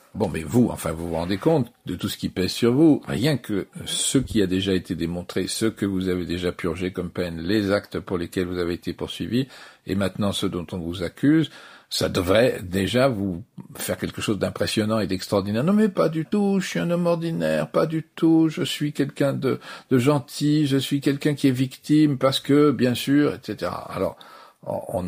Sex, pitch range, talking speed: male, 95-135 Hz, 210 wpm